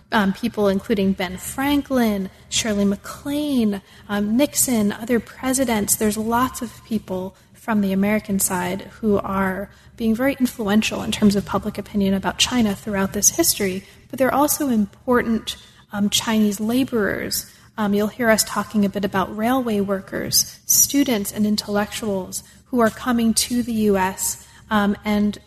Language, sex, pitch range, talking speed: English, female, 200-235 Hz, 150 wpm